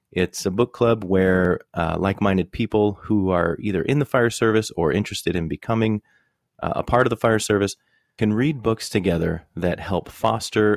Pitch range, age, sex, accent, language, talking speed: 90-115 Hz, 30-49, male, American, English, 185 wpm